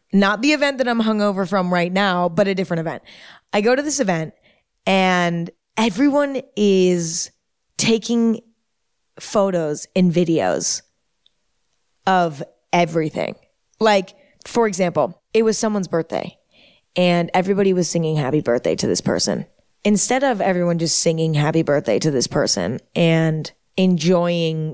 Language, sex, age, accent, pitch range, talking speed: English, female, 20-39, American, 170-210 Hz, 135 wpm